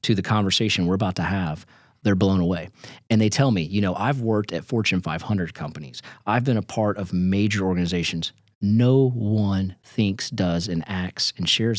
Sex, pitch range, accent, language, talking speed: male, 90-115 Hz, American, English, 190 wpm